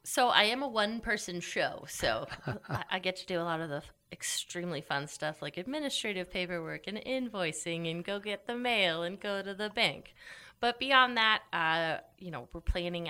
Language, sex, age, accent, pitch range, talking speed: English, female, 30-49, American, 145-195 Hz, 190 wpm